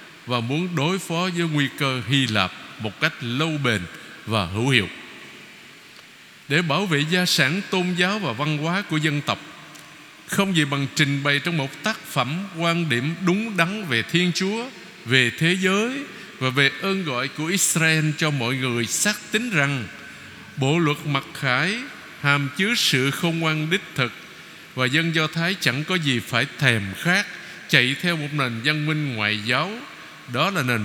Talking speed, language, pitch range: 180 wpm, Vietnamese, 130-170 Hz